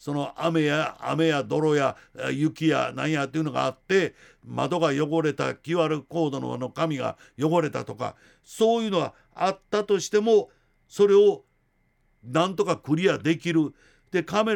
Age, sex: 60-79, male